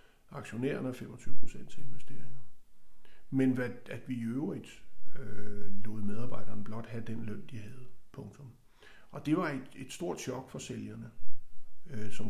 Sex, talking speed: male, 155 wpm